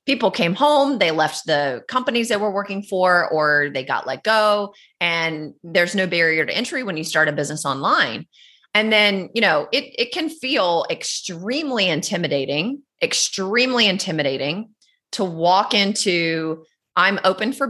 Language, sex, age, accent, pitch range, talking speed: English, female, 30-49, American, 155-210 Hz, 155 wpm